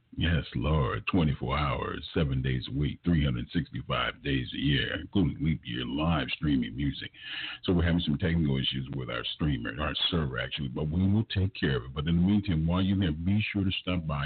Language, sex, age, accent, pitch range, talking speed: English, male, 50-69, American, 70-90 Hz, 200 wpm